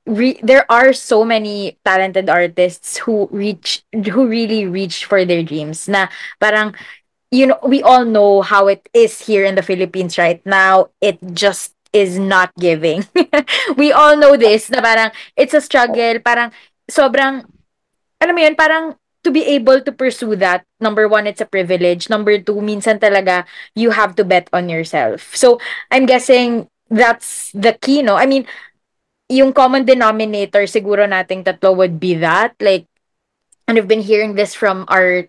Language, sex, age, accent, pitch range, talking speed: English, female, 20-39, Filipino, 185-235 Hz, 165 wpm